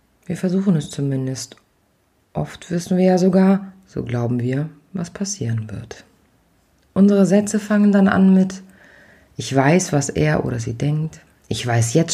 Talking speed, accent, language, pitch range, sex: 155 wpm, German, German, 130-190 Hz, female